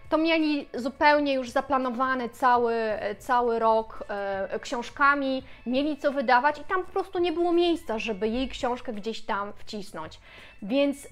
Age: 20-39